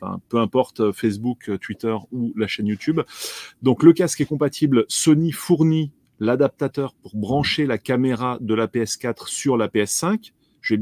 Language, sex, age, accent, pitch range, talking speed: French, male, 30-49, French, 110-145 Hz, 160 wpm